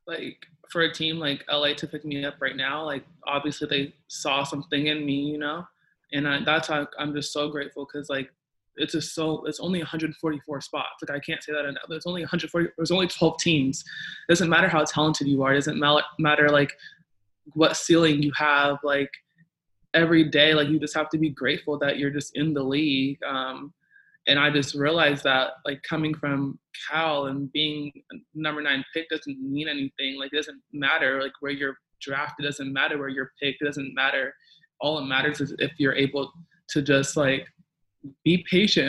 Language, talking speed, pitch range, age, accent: English, 200 wpm, 140-155 Hz, 20-39, American